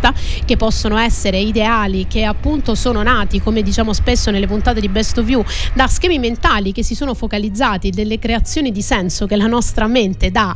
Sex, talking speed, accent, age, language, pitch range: female, 180 wpm, native, 30-49, Italian, 200-245 Hz